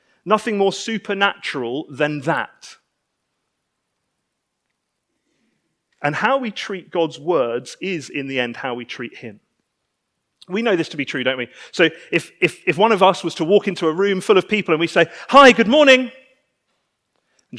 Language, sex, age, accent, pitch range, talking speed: English, male, 30-49, British, 160-215 Hz, 170 wpm